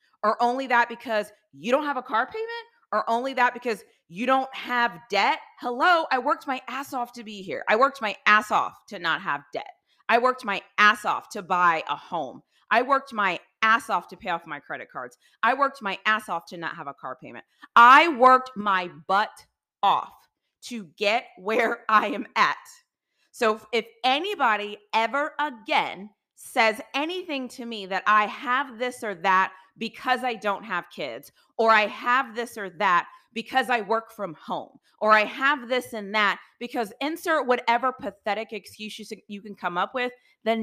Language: English